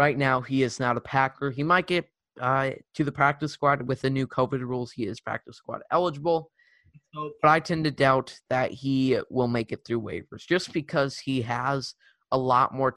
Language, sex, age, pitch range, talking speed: English, male, 20-39, 125-145 Hz, 210 wpm